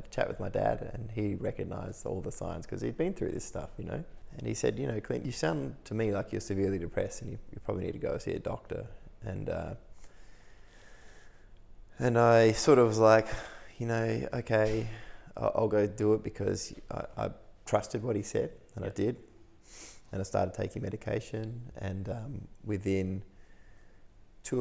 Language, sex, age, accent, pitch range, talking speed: English, male, 20-39, Australian, 95-115 Hz, 190 wpm